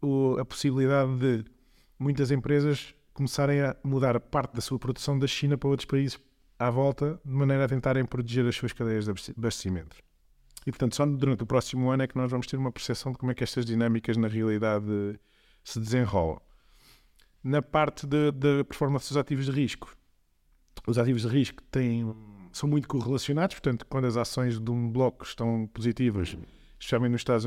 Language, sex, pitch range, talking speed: Portuguese, male, 115-140 Hz, 175 wpm